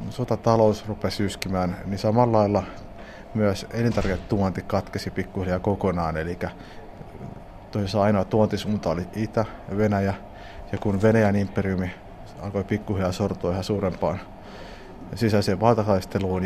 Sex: male